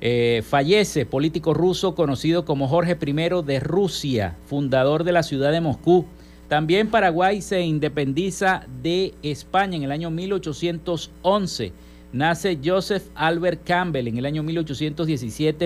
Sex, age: male, 50-69